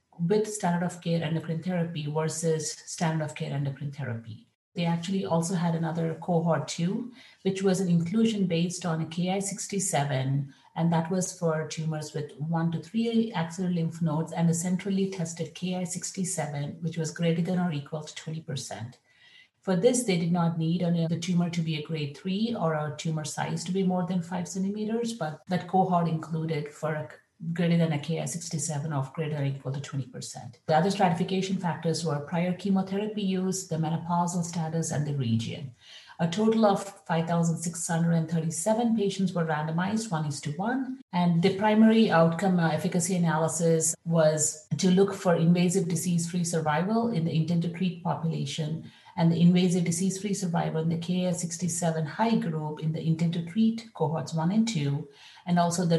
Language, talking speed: English, 165 wpm